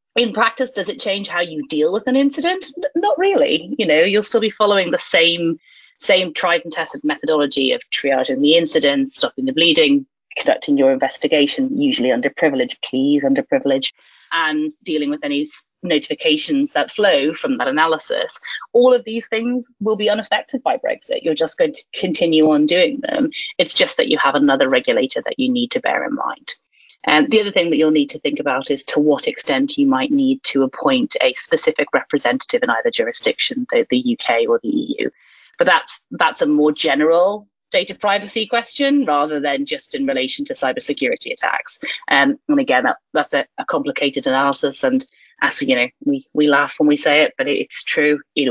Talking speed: 190 wpm